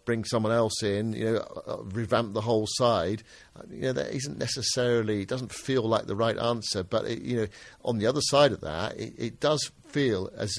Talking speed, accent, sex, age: 210 wpm, British, male, 50-69